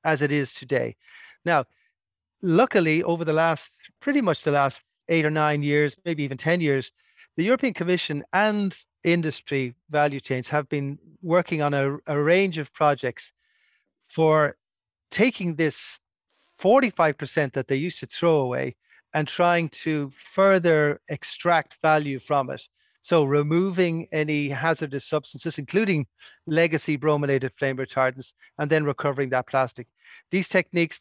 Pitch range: 140-170 Hz